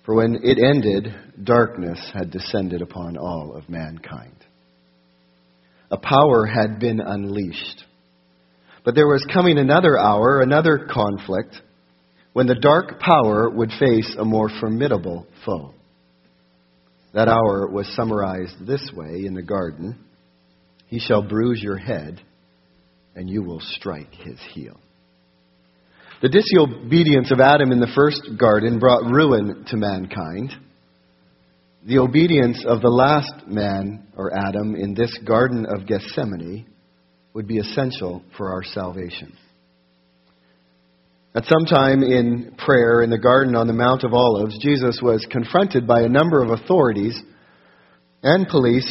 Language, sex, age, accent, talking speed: English, male, 40-59, American, 130 wpm